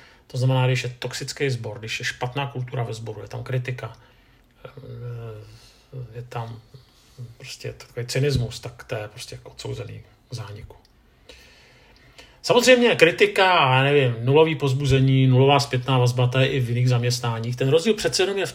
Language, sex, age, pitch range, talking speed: Czech, male, 40-59, 120-135 Hz, 150 wpm